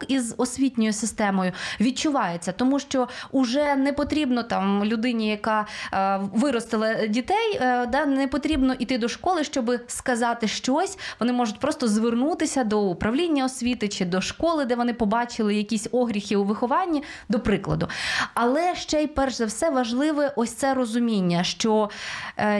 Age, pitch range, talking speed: 20-39, 210-260 Hz, 150 wpm